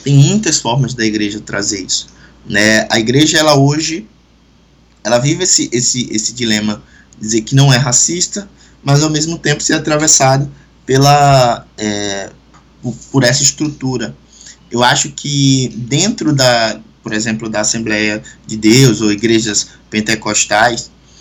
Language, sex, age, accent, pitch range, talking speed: Portuguese, male, 20-39, Brazilian, 110-145 Hz, 140 wpm